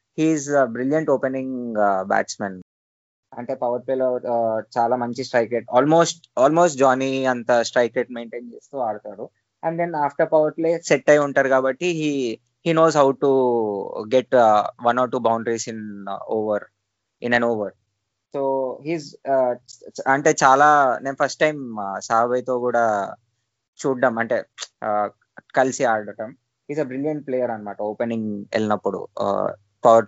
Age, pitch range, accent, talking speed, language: 20-39, 115-145 Hz, native, 150 wpm, Telugu